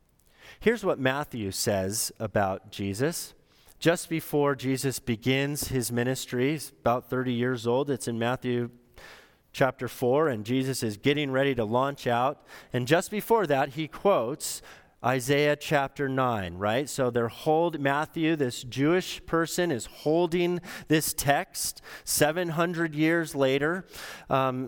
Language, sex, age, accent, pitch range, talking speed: English, male, 30-49, American, 125-170 Hz, 135 wpm